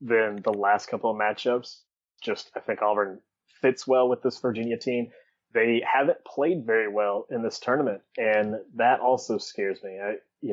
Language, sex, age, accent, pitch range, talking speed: English, male, 20-39, American, 100-115 Hz, 170 wpm